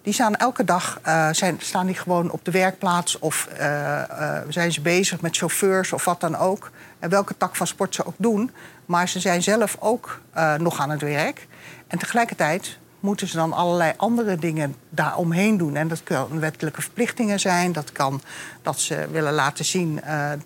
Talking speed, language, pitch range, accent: 195 wpm, Dutch, 160-205 Hz, Dutch